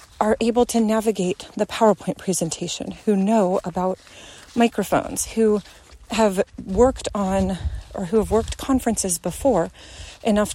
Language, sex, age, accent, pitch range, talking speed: English, female, 30-49, American, 195-240 Hz, 125 wpm